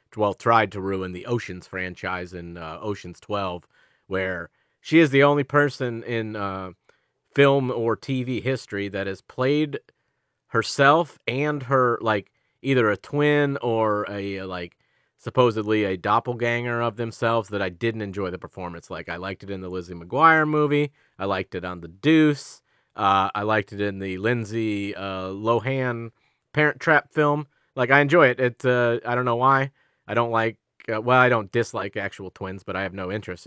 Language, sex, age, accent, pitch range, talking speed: English, male, 40-59, American, 95-125 Hz, 175 wpm